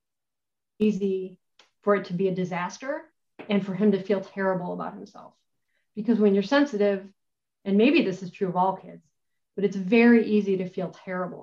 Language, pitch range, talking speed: English, 185-230 Hz, 180 wpm